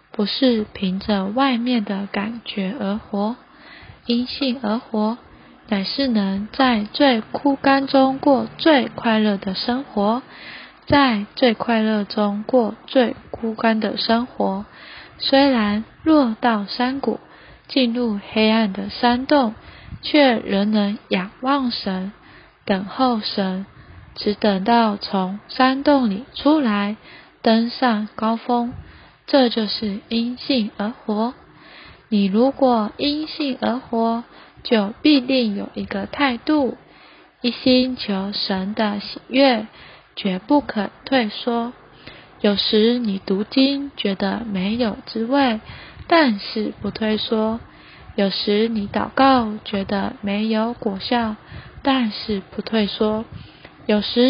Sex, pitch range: female, 205-255 Hz